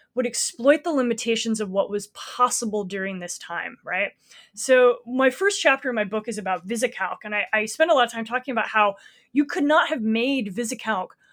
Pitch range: 215-290 Hz